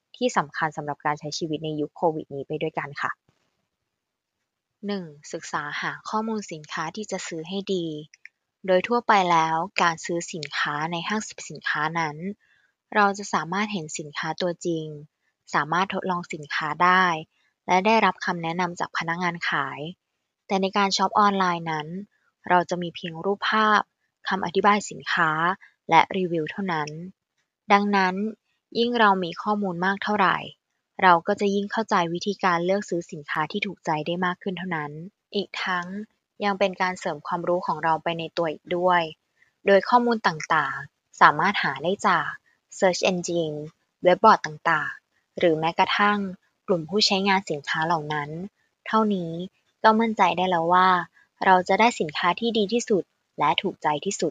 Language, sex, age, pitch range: Thai, female, 20-39, 165-200 Hz